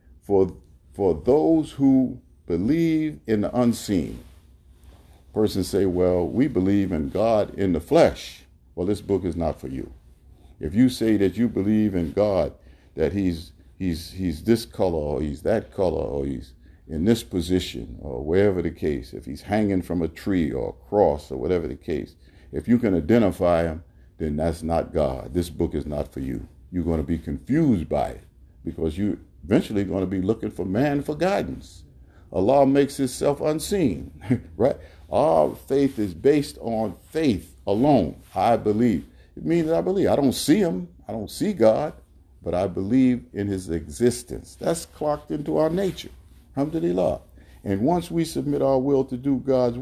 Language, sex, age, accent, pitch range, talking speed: English, male, 50-69, American, 80-130 Hz, 175 wpm